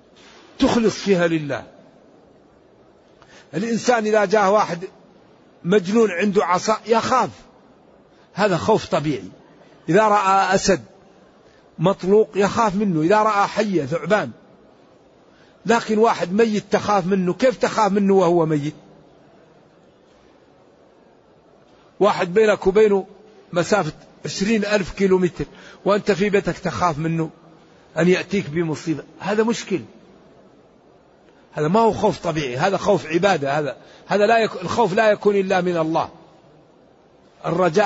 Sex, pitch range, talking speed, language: male, 170-215 Hz, 110 wpm, Arabic